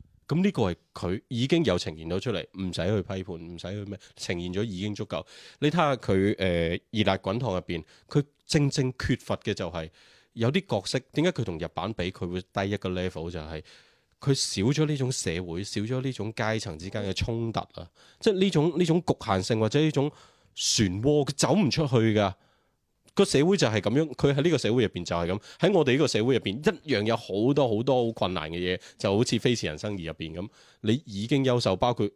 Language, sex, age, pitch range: Chinese, male, 20-39, 90-125 Hz